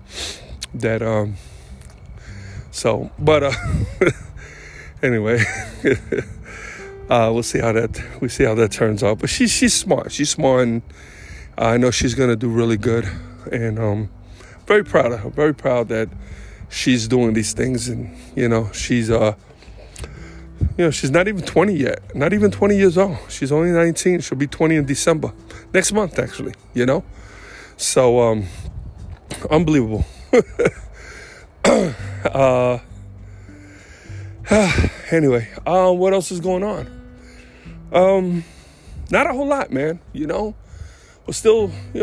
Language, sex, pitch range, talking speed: English, male, 100-155 Hz, 140 wpm